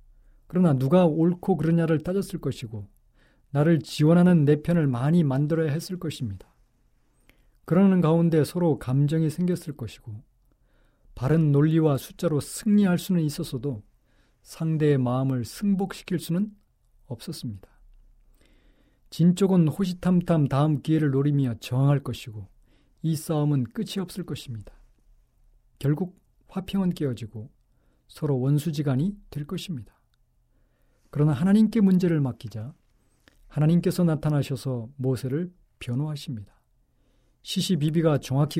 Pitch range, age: 130-170 Hz, 40-59